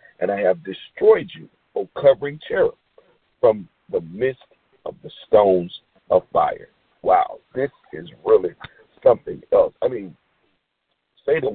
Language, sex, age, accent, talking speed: English, male, 50-69, American, 130 wpm